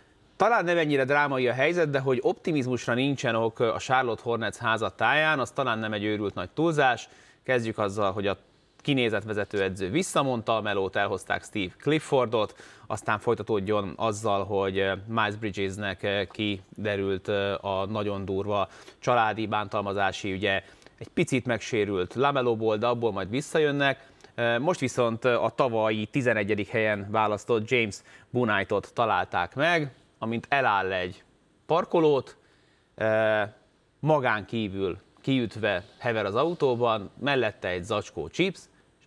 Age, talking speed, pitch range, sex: 30-49, 120 wpm, 100-130 Hz, male